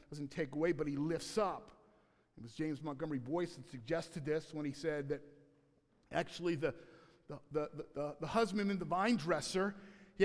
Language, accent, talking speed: English, American, 175 wpm